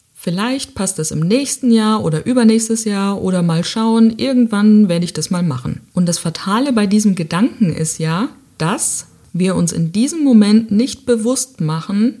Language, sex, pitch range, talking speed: German, female, 170-225 Hz, 170 wpm